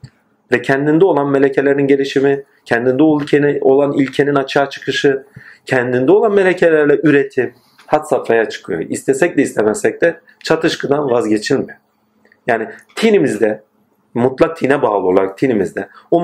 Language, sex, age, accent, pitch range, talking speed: Turkish, male, 40-59, native, 135-175 Hz, 120 wpm